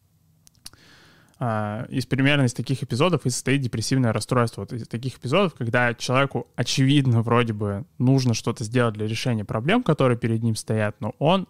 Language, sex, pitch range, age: Russian, male, 115-140 Hz, 20-39